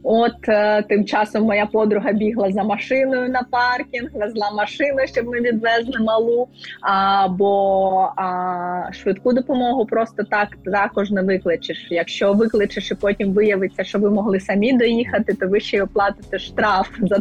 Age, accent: 20-39, native